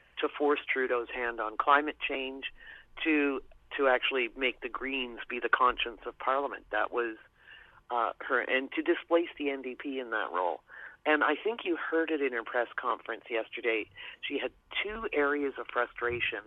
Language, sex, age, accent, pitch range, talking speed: English, male, 40-59, American, 120-165 Hz, 170 wpm